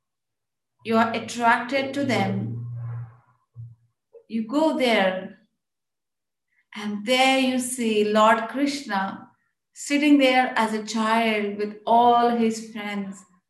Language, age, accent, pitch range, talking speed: English, 30-49, Indian, 210-245 Hz, 100 wpm